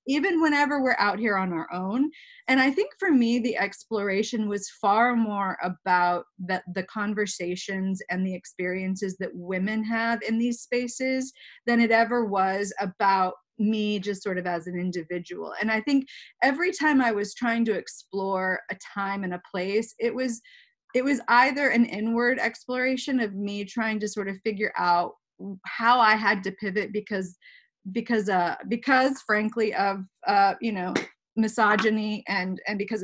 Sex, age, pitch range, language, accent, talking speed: female, 30-49, 195-245 Hz, English, American, 165 wpm